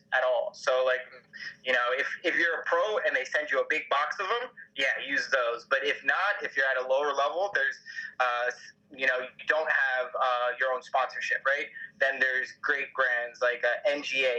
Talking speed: 215 wpm